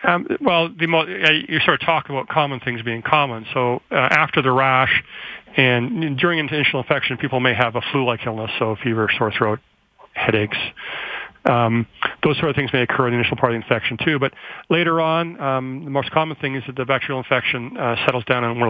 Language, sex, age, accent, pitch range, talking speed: English, male, 40-59, American, 115-135 Hz, 215 wpm